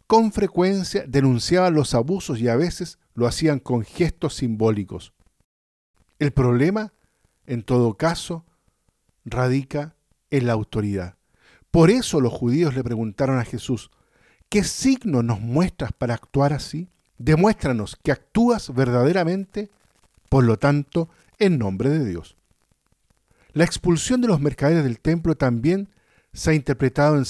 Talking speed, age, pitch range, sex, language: 130 wpm, 50-69, 120-160 Hz, male, Spanish